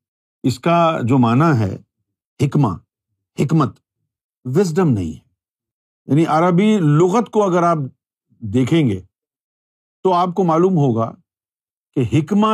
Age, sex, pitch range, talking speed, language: 50-69, male, 110-165 Hz, 120 wpm, Urdu